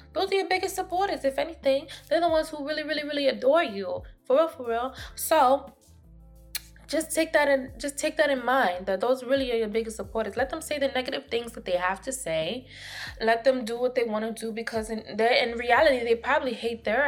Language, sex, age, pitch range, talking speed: English, female, 20-39, 205-270 Hz, 225 wpm